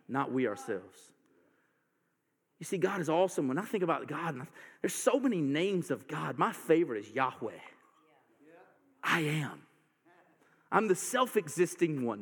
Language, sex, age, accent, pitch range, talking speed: English, male, 40-59, American, 185-275 Hz, 140 wpm